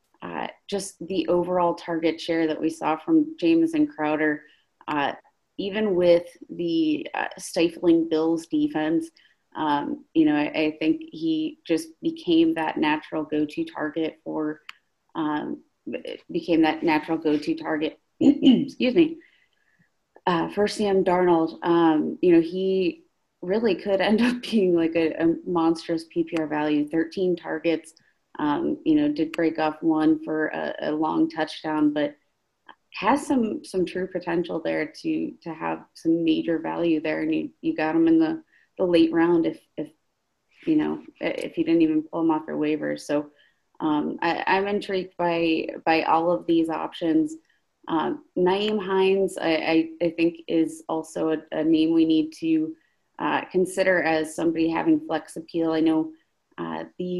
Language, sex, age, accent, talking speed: English, female, 30-49, American, 155 wpm